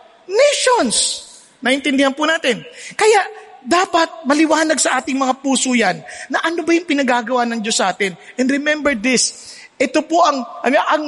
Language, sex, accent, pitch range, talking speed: English, male, Filipino, 225-315 Hz, 150 wpm